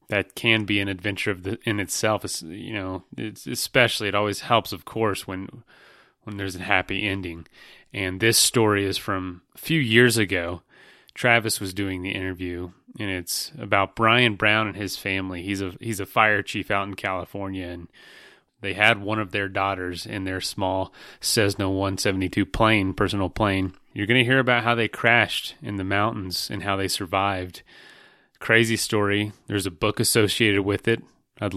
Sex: male